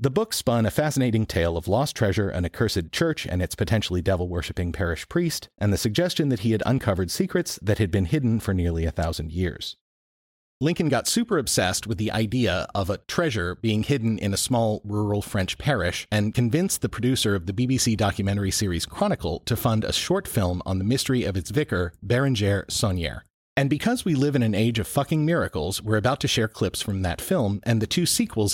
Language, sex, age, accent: English, male, 40-59, American